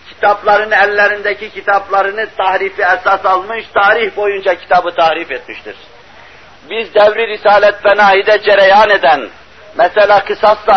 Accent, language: native, Turkish